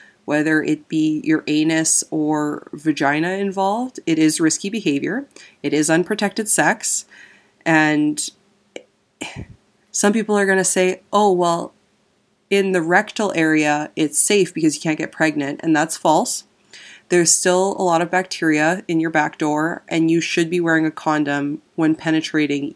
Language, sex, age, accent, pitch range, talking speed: English, female, 20-39, American, 155-180 Hz, 155 wpm